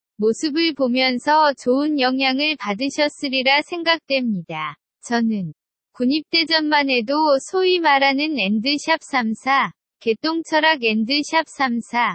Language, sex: Korean, female